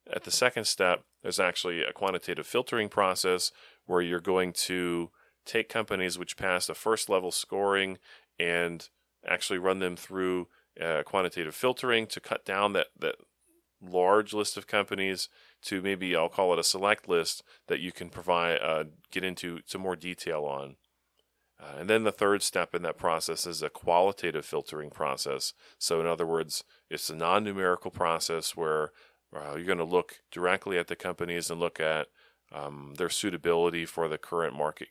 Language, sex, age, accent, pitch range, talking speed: English, male, 30-49, American, 85-100 Hz, 170 wpm